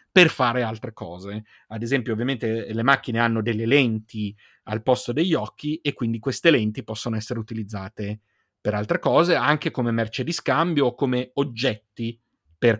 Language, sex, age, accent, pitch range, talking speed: Italian, male, 40-59, native, 110-135 Hz, 165 wpm